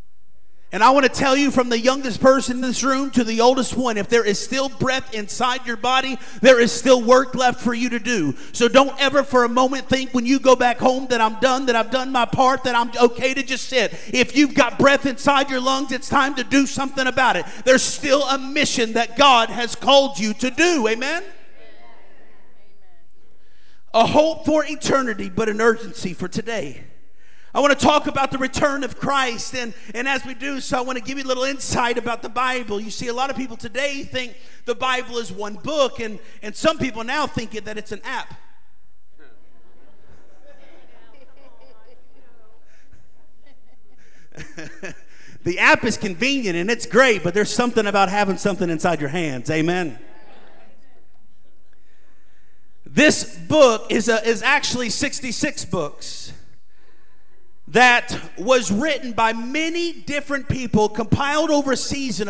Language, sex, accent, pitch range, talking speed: English, male, American, 225-270 Hz, 175 wpm